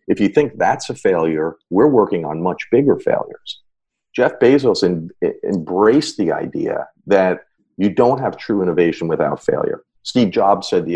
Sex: male